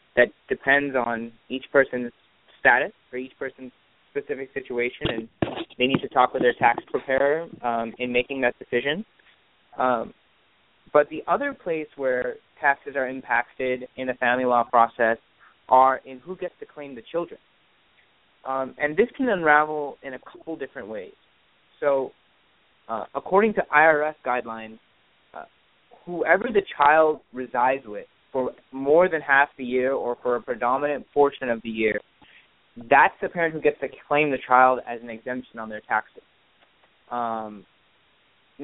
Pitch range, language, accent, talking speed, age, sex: 125-150 Hz, English, American, 155 wpm, 20-39, male